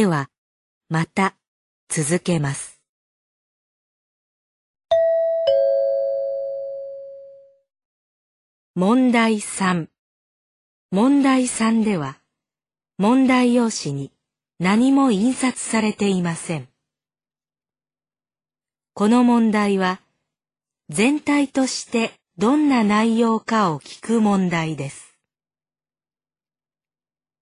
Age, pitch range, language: 40-59, 165-250 Hz, Vietnamese